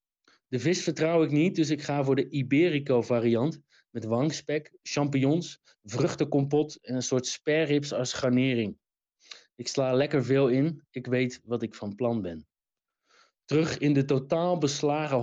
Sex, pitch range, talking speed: male, 125-155 Hz, 155 wpm